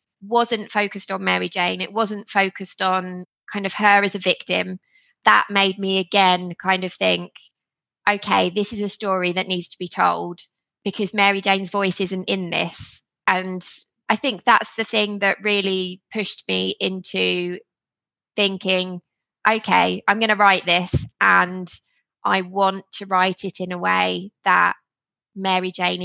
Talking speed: 155 wpm